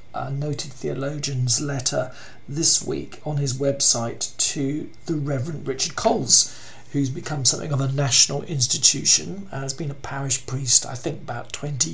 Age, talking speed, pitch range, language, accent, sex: 50-69, 150 wpm, 130-150 Hz, English, British, male